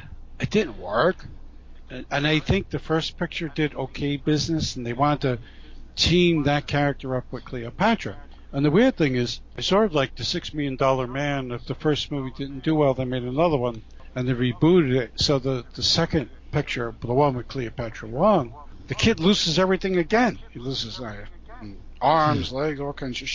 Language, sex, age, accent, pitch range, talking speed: English, male, 60-79, American, 125-165 Hz, 190 wpm